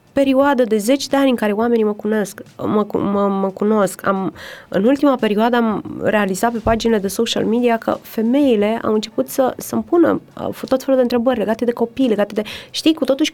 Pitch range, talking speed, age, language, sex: 195-260 Hz, 205 wpm, 20-39, Romanian, female